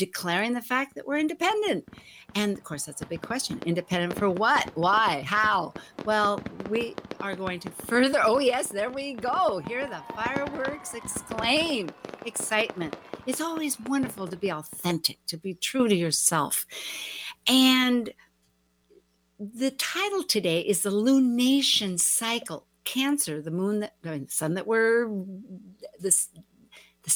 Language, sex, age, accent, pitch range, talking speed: English, female, 60-79, American, 170-250 Hz, 145 wpm